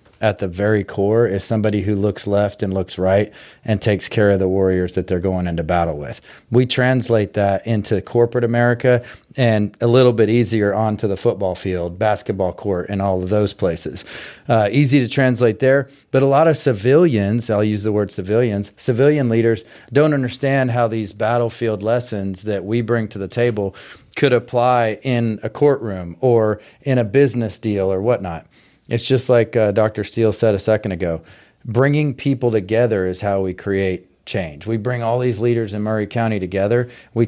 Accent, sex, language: American, male, English